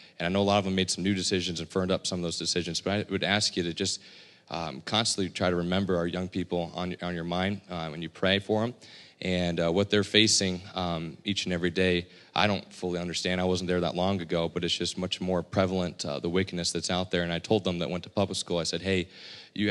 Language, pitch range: English, 85-95 Hz